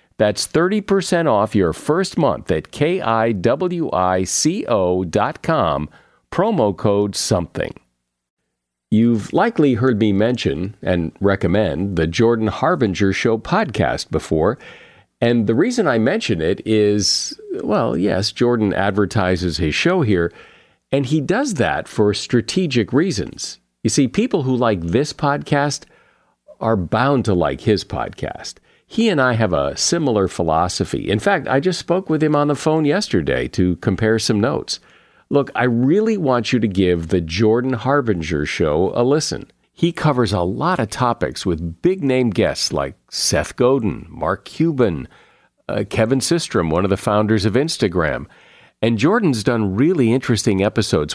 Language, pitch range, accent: English, 95-135 Hz, American